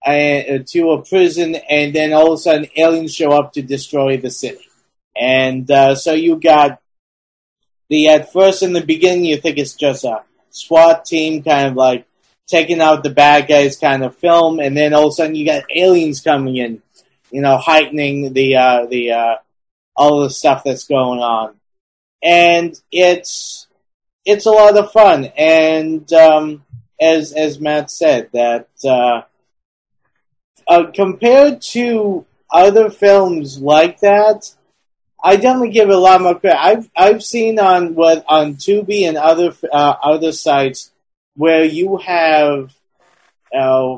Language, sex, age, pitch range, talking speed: English, male, 30-49, 140-175 Hz, 155 wpm